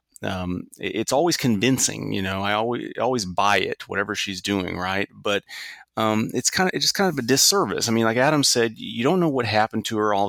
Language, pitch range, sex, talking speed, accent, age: English, 95-120 Hz, male, 225 wpm, American, 30-49